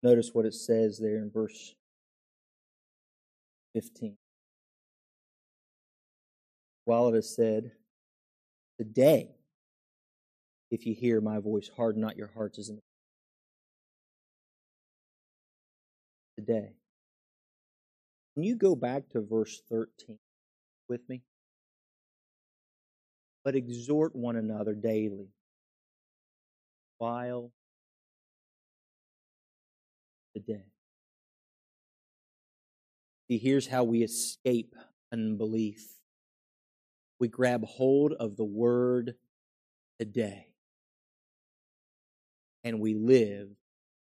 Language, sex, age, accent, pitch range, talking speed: English, male, 40-59, American, 105-120 Hz, 80 wpm